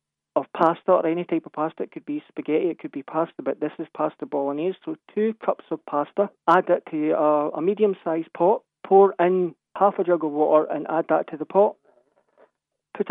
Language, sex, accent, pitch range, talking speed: English, male, British, 155-185 Hz, 210 wpm